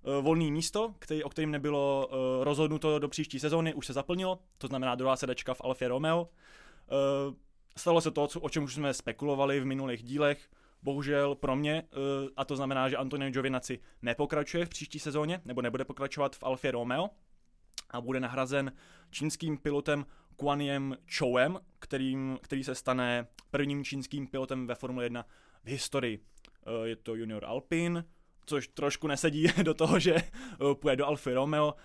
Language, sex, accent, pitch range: Czech, male, native, 125-150 Hz